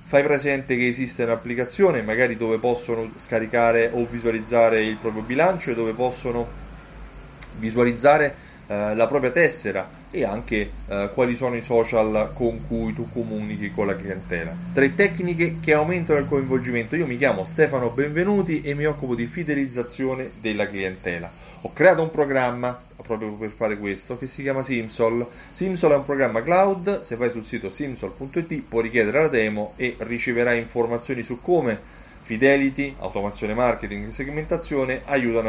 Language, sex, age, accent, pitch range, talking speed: Italian, male, 30-49, native, 115-145 Hz, 150 wpm